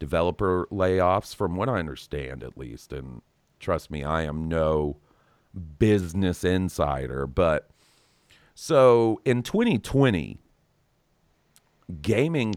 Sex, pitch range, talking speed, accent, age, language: male, 80-105 Hz, 100 wpm, American, 40-59, English